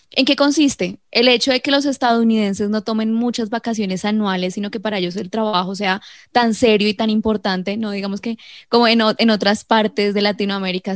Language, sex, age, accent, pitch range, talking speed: Spanish, female, 10-29, Colombian, 195-235 Hz, 195 wpm